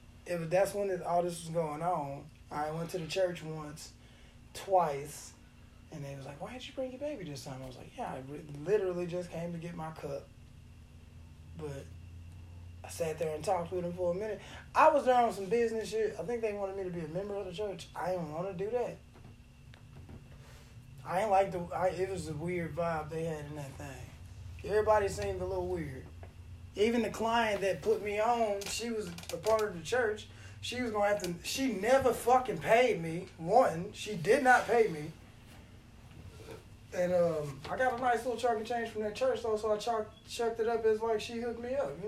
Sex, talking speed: male, 215 wpm